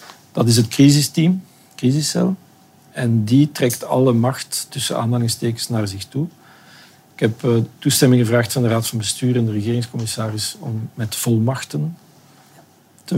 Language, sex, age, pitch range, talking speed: Dutch, male, 50-69, 115-140 Hz, 145 wpm